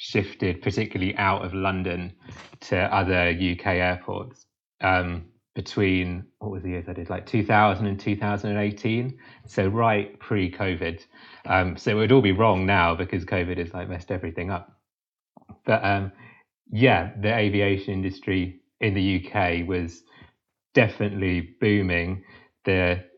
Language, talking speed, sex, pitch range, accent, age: English, 130 wpm, male, 90-105 Hz, British, 30-49